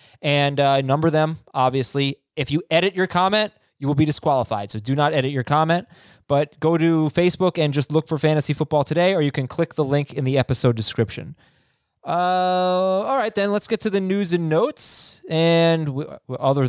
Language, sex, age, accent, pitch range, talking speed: English, male, 20-39, American, 125-165 Hz, 200 wpm